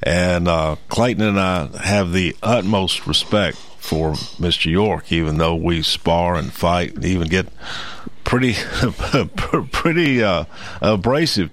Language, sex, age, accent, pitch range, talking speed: English, male, 50-69, American, 85-100 Hz, 130 wpm